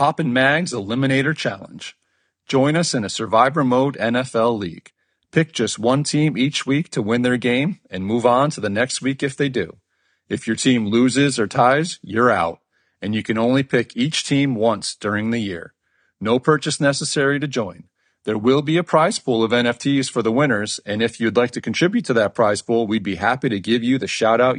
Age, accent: 40-59, American